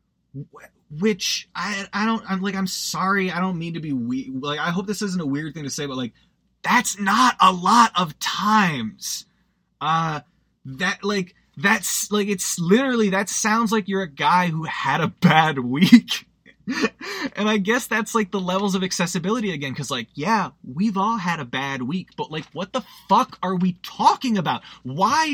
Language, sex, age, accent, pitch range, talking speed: English, male, 20-39, American, 160-215 Hz, 185 wpm